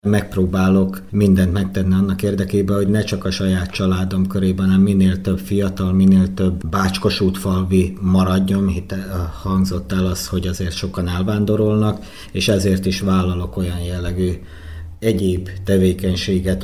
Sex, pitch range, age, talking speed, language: male, 90-100 Hz, 50-69, 135 wpm, Hungarian